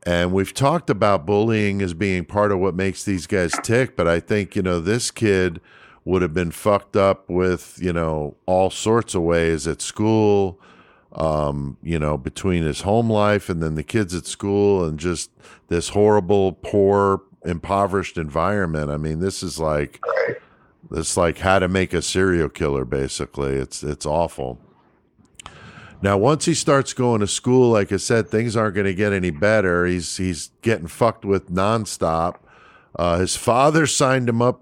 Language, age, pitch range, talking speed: English, 50-69, 85-110 Hz, 175 wpm